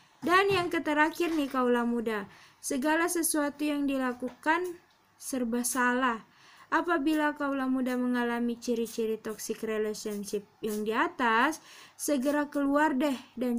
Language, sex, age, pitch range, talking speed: Indonesian, female, 20-39, 225-290 Hz, 115 wpm